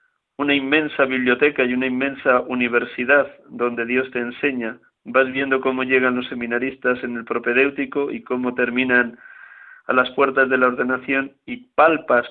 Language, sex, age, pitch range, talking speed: Spanish, male, 50-69, 125-135 Hz, 150 wpm